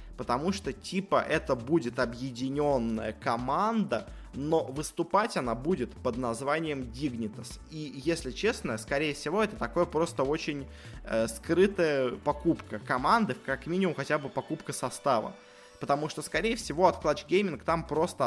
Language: Russian